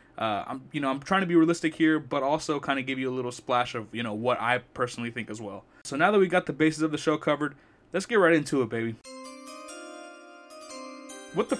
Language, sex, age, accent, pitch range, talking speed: English, male, 20-39, American, 125-160 Hz, 245 wpm